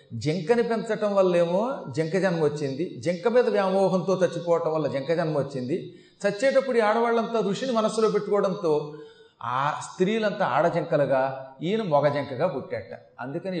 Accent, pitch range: native, 155-200 Hz